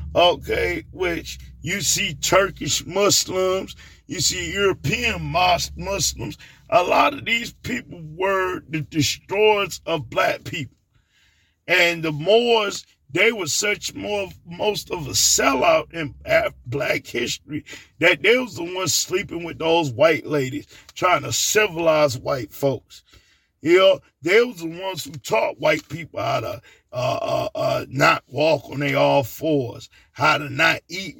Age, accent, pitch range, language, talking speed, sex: 50-69, American, 140-180 Hz, English, 145 wpm, male